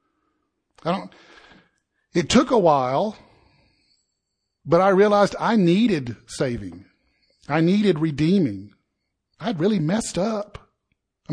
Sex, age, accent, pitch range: male, 50-69, American, 130-170 Hz